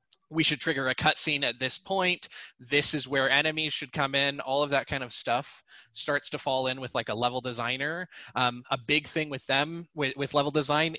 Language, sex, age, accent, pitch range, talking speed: English, male, 20-39, American, 125-150 Hz, 220 wpm